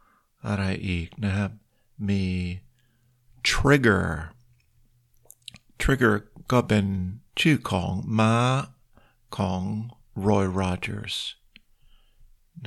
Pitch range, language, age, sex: 95-115 Hz, Thai, 60-79, male